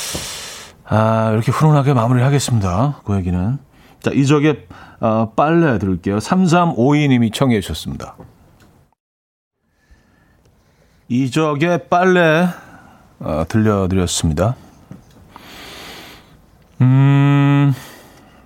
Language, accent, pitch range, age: Korean, native, 105-150 Hz, 40-59